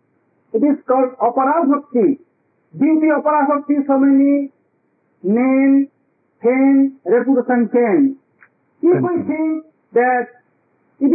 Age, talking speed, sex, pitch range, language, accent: 50-69, 95 wpm, male, 250-300 Hz, English, Indian